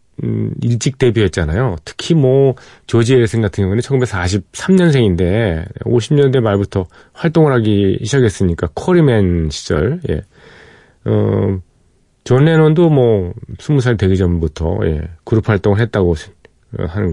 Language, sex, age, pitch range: Korean, male, 40-59, 90-125 Hz